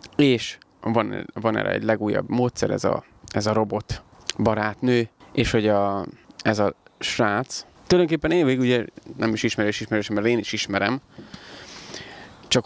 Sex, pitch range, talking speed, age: male, 105-120 Hz, 150 wpm, 20-39